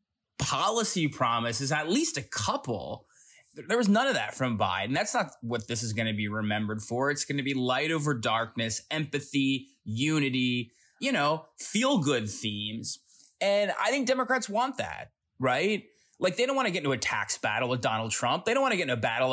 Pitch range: 120-160 Hz